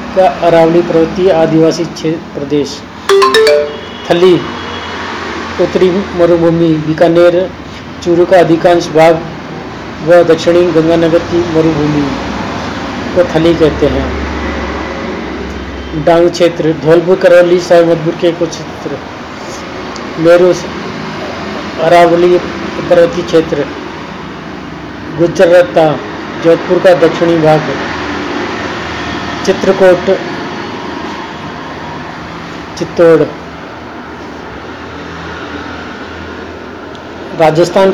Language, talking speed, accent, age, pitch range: Hindi, 65 wpm, native, 40-59, 160-180 Hz